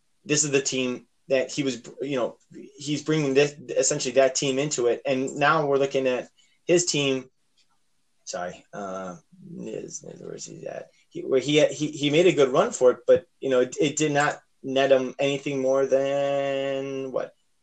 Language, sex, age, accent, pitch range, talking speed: English, male, 20-39, American, 130-160 Hz, 170 wpm